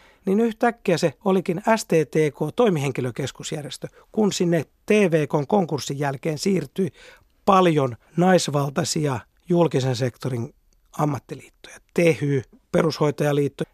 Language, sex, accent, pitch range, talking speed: Finnish, male, native, 145-190 Hz, 75 wpm